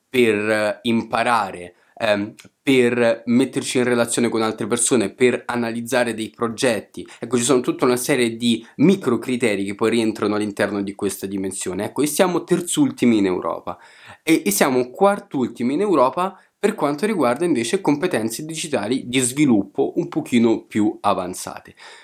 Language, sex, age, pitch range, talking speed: Italian, male, 20-39, 110-135 Hz, 145 wpm